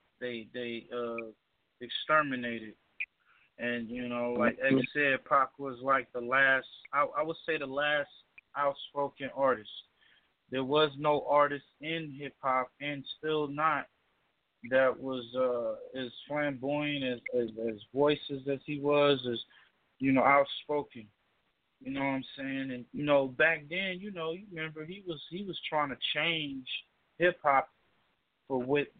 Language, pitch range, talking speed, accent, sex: English, 125-145 Hz, 155 wpm, American, male